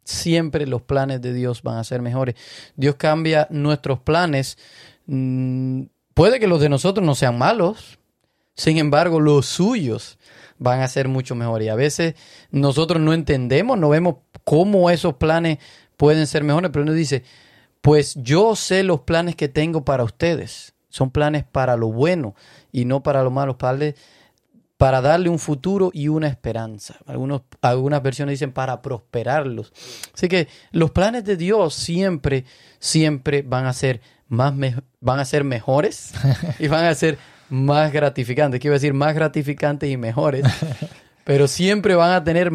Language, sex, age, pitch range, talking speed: Spanish, male, 30-49, 130-160 Hz, 155 wpm